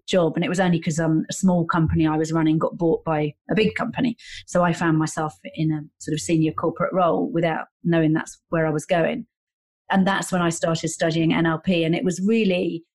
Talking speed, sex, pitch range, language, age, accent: 220 wpm, female, 165-185 Hz, English, 30-49, British